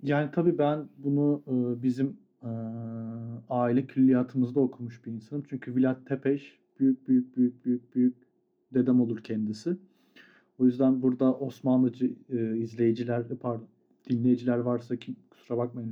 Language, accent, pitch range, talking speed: Turkish, native, 125-155 Hz, 130 wpm